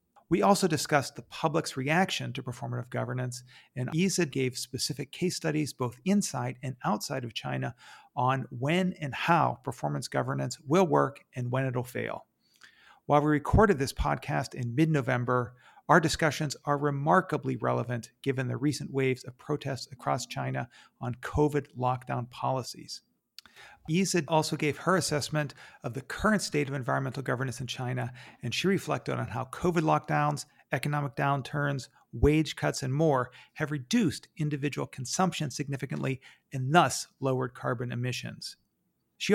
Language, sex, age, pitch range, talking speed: English, male, 40-59, 125-155 Hz, 145 wpm